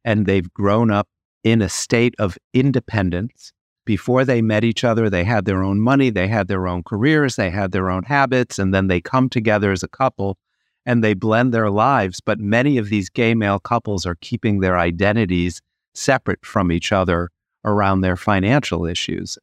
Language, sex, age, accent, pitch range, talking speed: English, male, 50-69, American, 95-120 Hz, 190 wpm